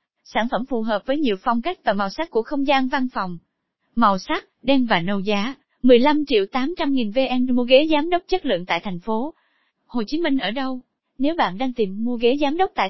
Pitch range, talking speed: 215-285 Hz, 235 wpm